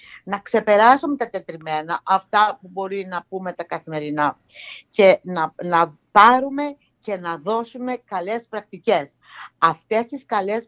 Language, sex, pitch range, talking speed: Greek, female, 180-245 Hz, 130 wpm